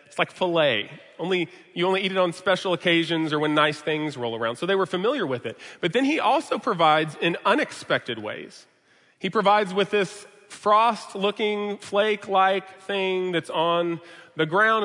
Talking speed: 180 wpm